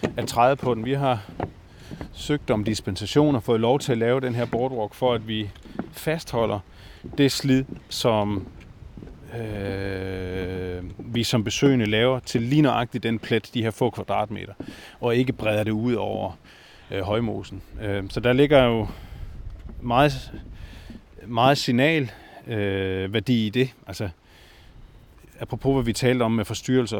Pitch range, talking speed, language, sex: 100-120 Hz, 145 wpm, Danish, male